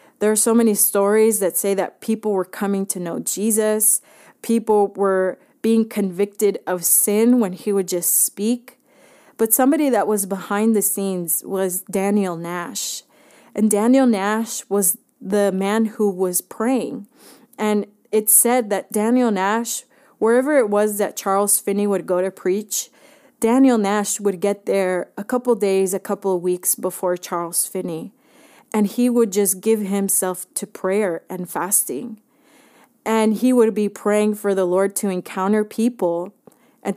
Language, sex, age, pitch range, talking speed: Spanish, female, 30-49, 195-230 Hz, 160 wpm